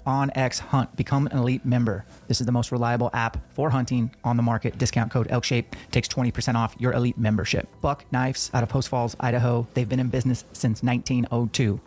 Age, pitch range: 30-49, 120-130 Hz